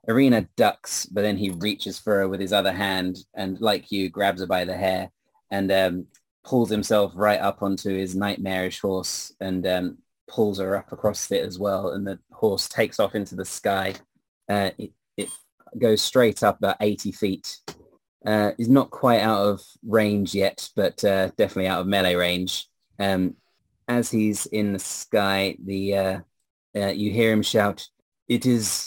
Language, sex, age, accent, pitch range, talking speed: English, male, 20-39, British, 95-105 Hz, 180 wpm